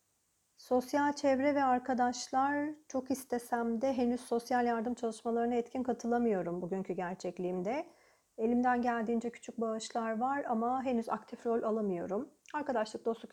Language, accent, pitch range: Turkish, native, 210-260 Hz